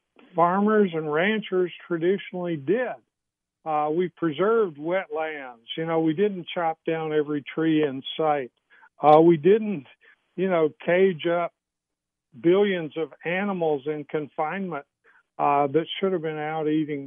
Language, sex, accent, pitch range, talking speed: English, male, American, 155-190 Hz, 135 wpm